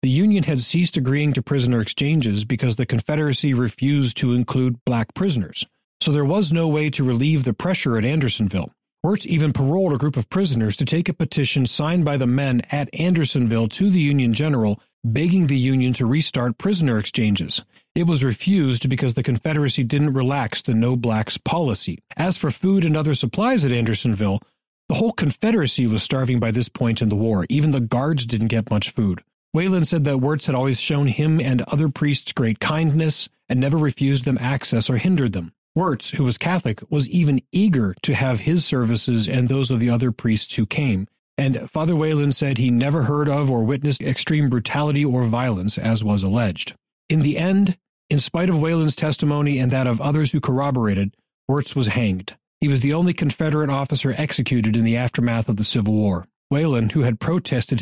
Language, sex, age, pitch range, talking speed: English, male, 40-59, 120-155 Hz, 190 wpm